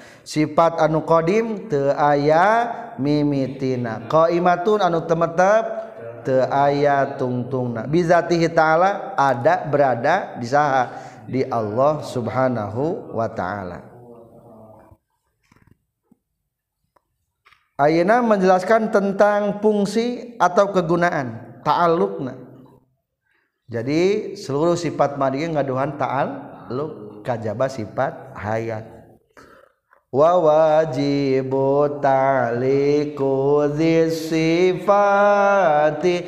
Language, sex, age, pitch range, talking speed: Indonesian, male, 40-59, 130-170 Hz, 75 wpm